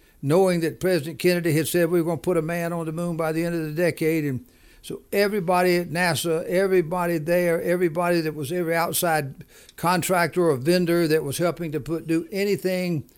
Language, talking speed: English, 200 wpm